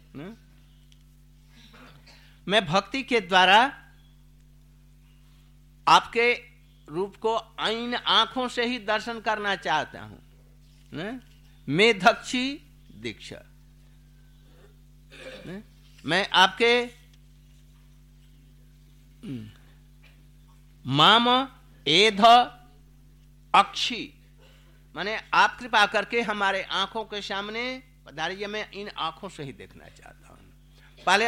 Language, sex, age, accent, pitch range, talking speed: Hindi, male, 60-79, native, 140-210 Hz, 60 wpm